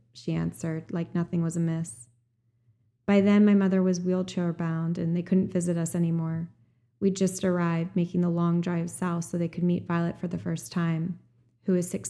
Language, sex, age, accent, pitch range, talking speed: English, female, 20-39, American, 165-185 Hz, 190 wpm